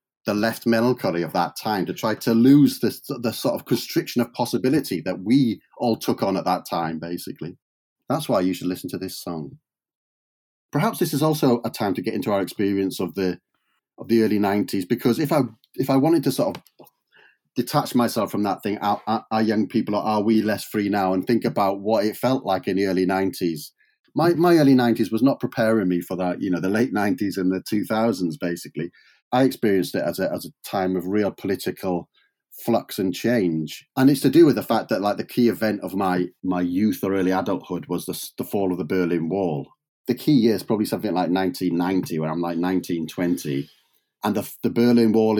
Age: 30-49